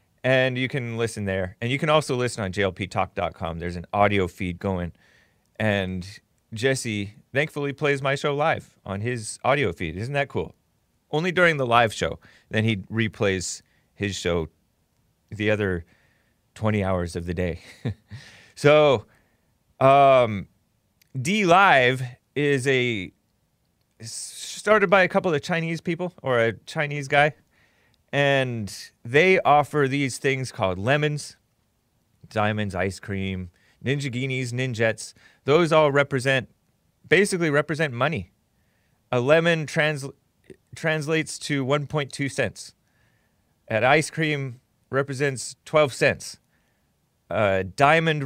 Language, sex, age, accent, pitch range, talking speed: English, male, 30-49, American, 105-145 Hz, 125 wpm